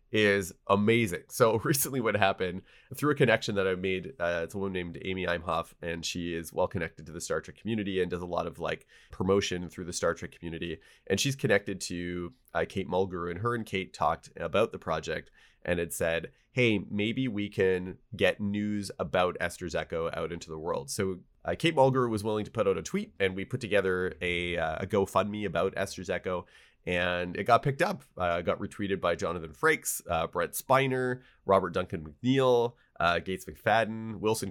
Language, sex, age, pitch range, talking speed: English, male, 30-49, 90-120 Hz, 200 wpm